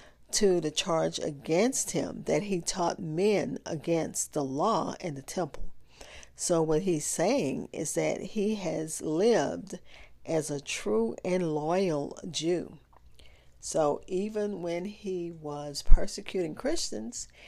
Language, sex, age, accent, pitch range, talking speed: English, female, 40-59, American, 145-180 Hz, 125 wpm